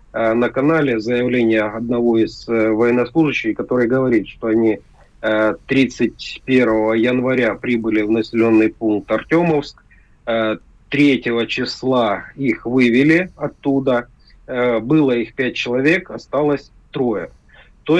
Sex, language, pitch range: male, Russian, 115-140 Hz